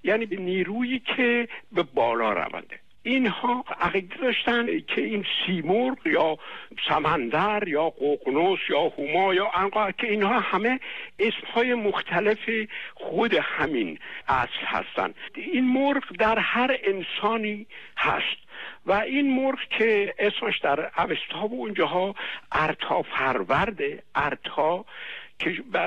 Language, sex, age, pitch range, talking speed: Persian, male, 60-79, 195-245 Hz, 120 wpm